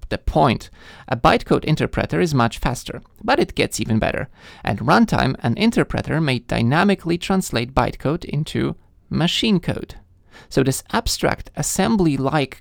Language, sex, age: English, male, 20-39